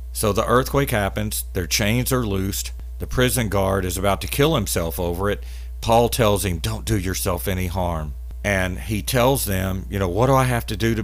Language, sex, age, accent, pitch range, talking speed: English, male, 50-69, American, 70-105 Hz, 210 wpm